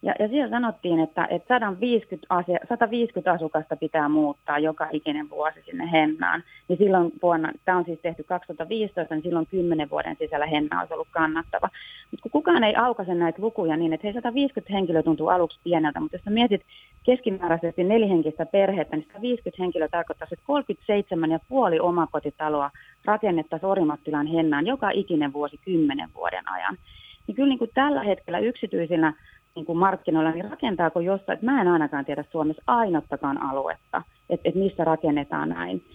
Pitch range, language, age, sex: 150-195 Hz, Finnish, 30-49, female